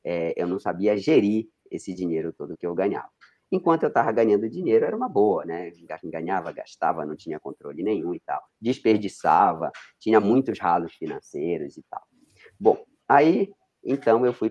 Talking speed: 165 wpm